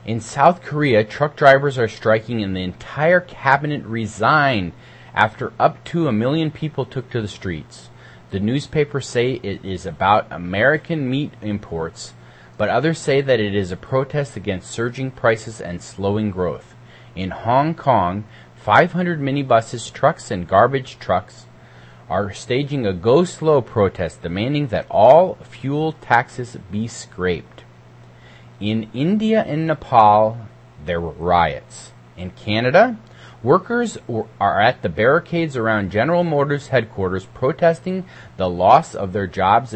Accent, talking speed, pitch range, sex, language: American, 135 wpm, 90-140 Hz, male, English